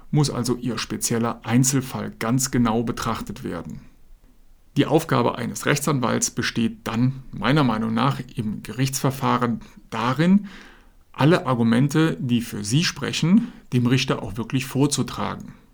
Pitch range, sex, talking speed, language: 115-140 Hz, male, 120 wpm, German